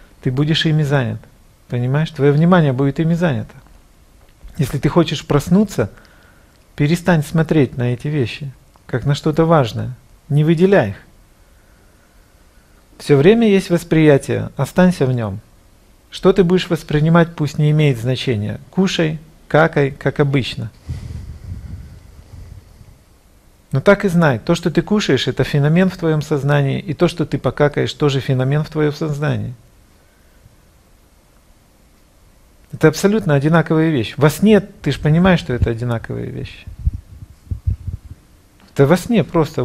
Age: 40-59